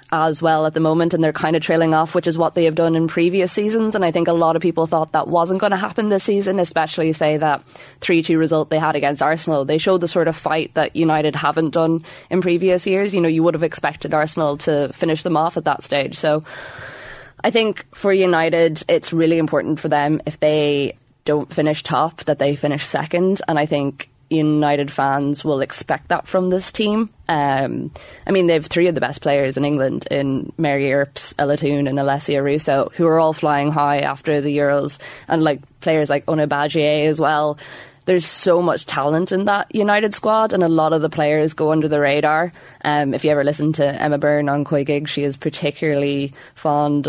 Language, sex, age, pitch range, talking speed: English, female, 20-39, 145-170 Hz, 215 wpm